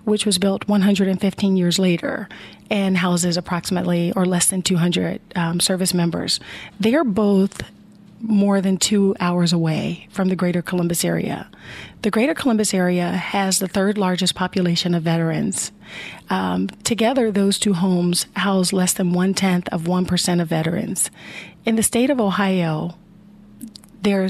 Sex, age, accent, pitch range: female, 40-59, American, 185-215 Hz